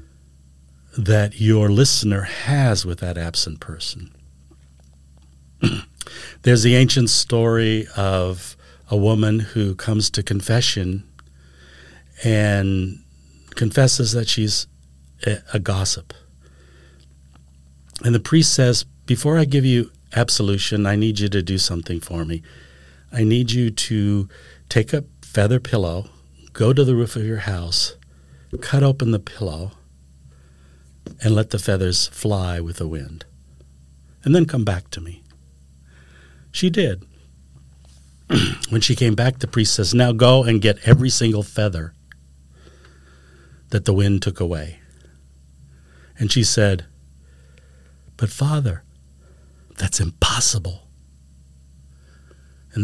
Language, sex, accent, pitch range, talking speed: English, male, American, 70-110 Hz, 120 wpm